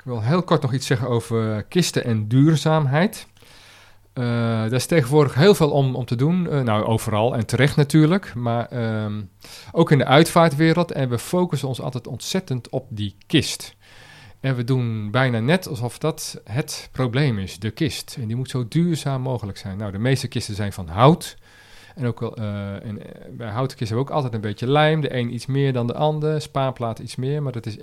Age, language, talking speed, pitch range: 40-59, Dutch, 205 wpm, 110-150 Hz